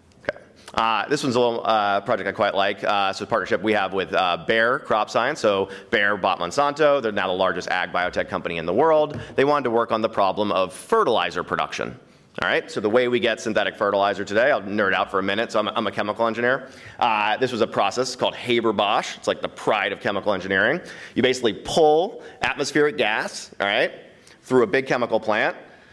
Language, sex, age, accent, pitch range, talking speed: English, male, 30-49, American, 115-150 Hz, 220 wpm